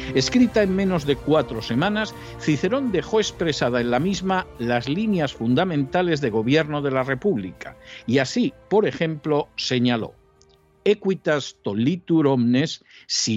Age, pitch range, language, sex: 60-79, 120-185 Hz, Spanish, male